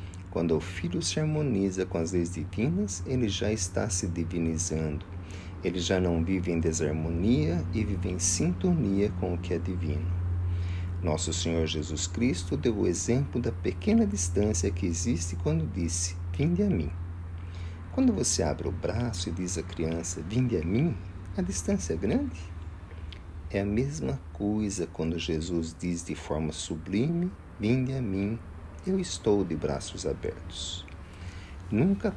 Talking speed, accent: 150 wpm, Brazilian